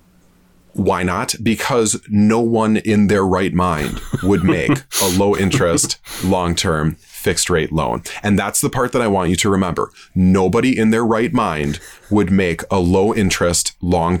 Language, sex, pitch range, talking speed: English, male, 90-110 Hz, 170 wpm